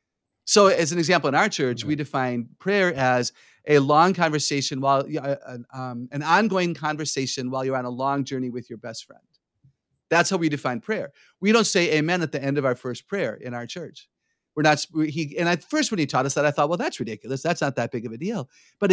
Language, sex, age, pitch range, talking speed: English, male, 40-59, 130-175 Hz, 225 wpm